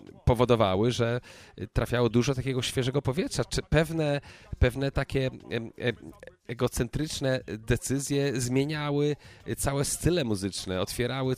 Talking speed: 95 wpm